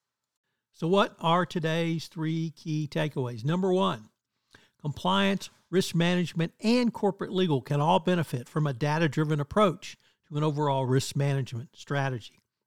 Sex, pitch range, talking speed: male, 140-180 Hz, 135 wpm